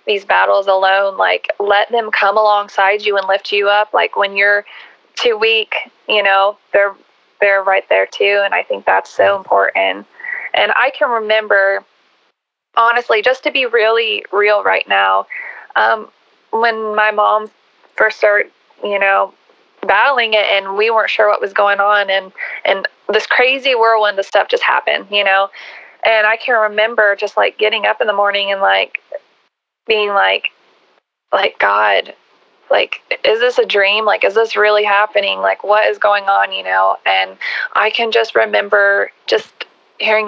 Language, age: English, 20-39